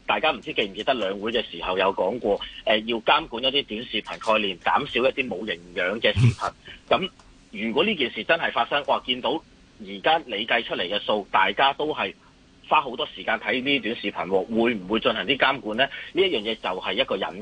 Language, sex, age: Chinese, male, 30-49